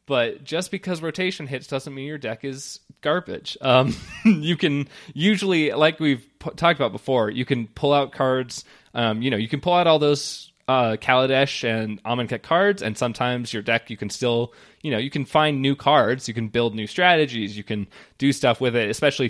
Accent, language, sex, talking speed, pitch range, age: American, English, male, 205 wpm, 110-140 Hz, 20-39